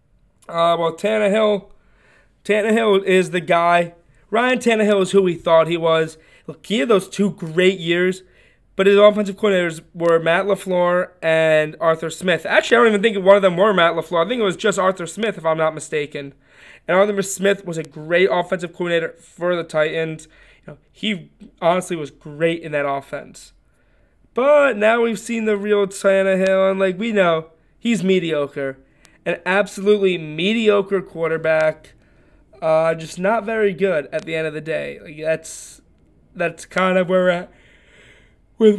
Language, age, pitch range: English, 20-39, 160-200 Hz